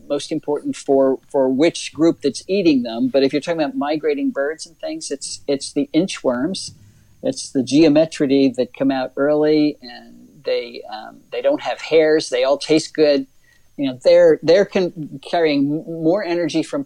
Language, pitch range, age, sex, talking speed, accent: English, 130-175 Hz, 50-69, male, 175 wpm, American